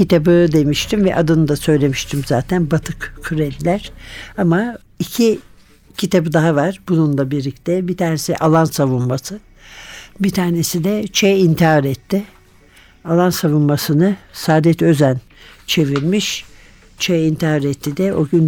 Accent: native